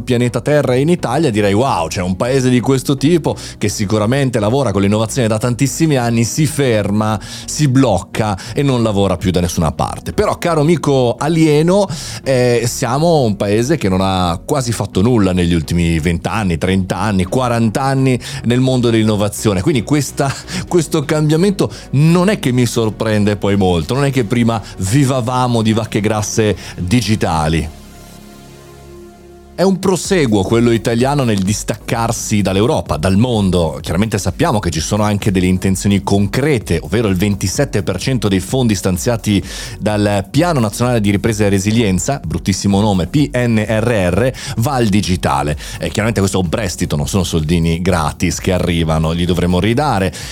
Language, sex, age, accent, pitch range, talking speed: Italian, male, 30-49, native, 95-130 Hz, 155 wpm